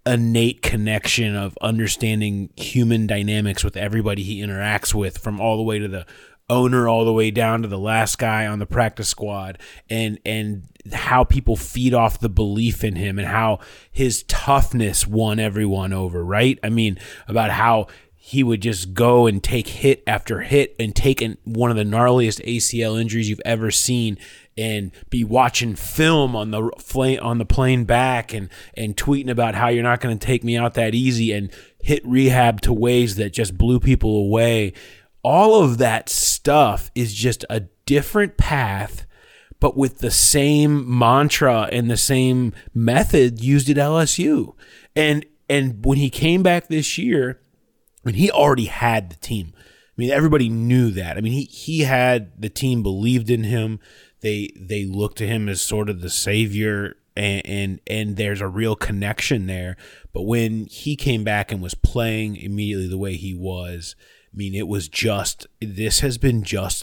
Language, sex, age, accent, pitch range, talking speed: English, male, 30-49, American, 105-125 Hz, 175 wpm